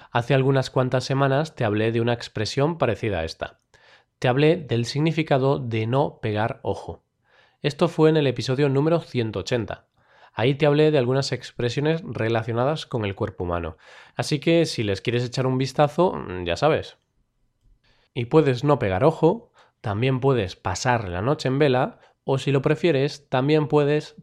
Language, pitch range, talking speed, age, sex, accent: Spanish, 115-145 Hz, 165 wpm, 20-39, male, Spanish